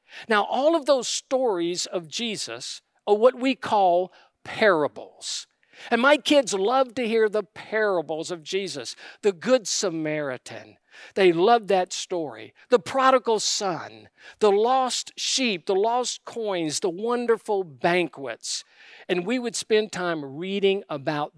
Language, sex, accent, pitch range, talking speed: English, male, American, 175-245 Hz, 135 wpm